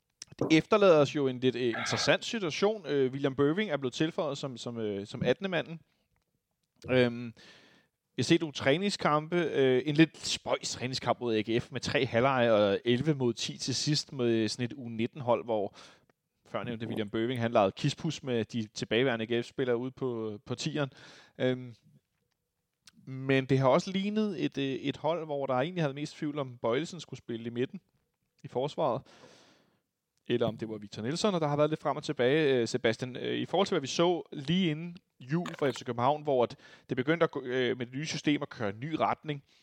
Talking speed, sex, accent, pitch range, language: 185 wpm, male, native, 120-150 Hz, Danish